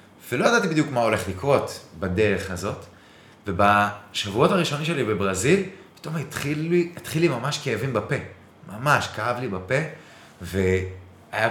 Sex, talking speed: male, 130 wpm